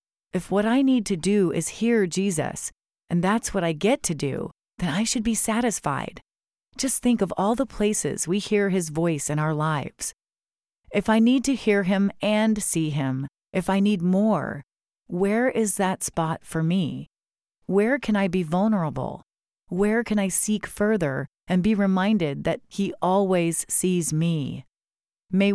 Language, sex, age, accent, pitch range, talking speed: English, female, 40-59, American, 165-220 Hz, 170 wpm